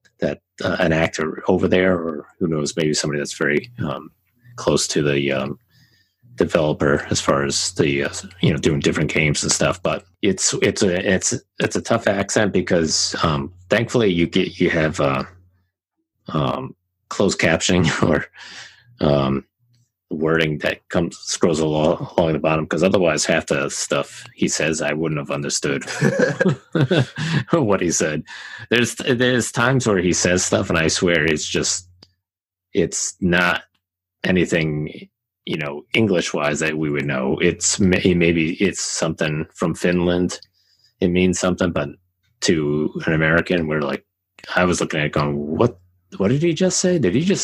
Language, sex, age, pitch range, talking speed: English, male, 30-49, 80-105 Hz, 160 wpm